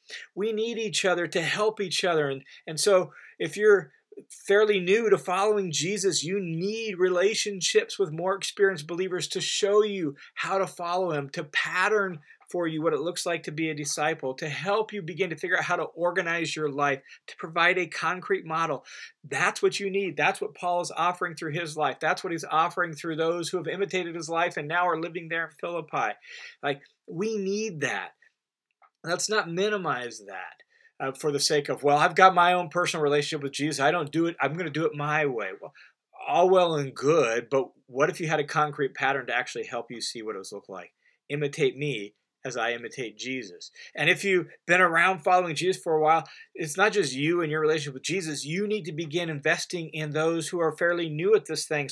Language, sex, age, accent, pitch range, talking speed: English, male, 40-59, American, 150-190 Hz, 215 wpm